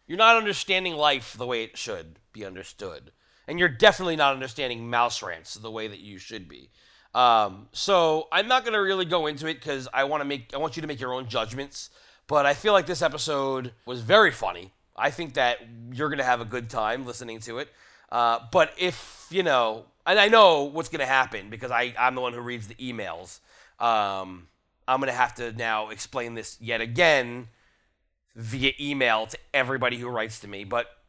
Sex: male